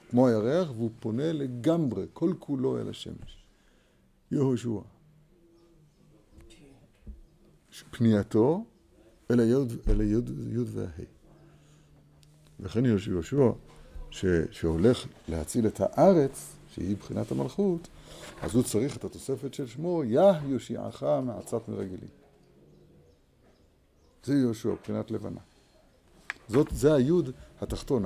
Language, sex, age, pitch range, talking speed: Hebrew, male, 60-79, 100-145 Hz, 90 wpm